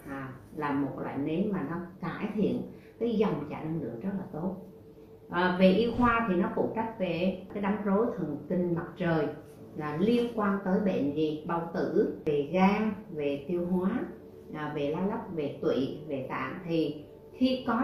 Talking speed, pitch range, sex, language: 190 wpm, 160-215 Hz, female, Vietnamese